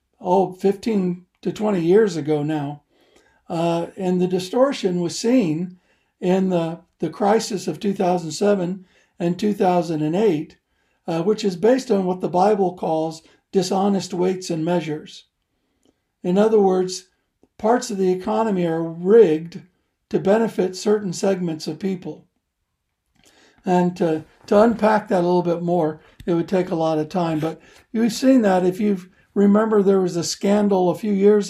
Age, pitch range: 60-79, 165-200 Hz